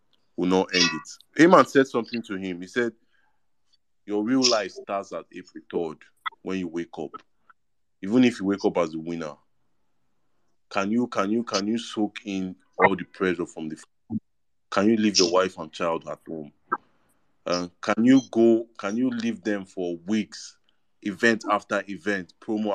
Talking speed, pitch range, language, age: 175 wpm, 95-115 Hz, English, 30-49